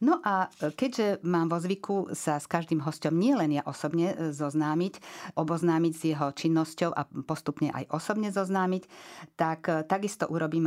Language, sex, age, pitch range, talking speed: Slovak, female, 50-69, 140-170 Hz, 145 wpm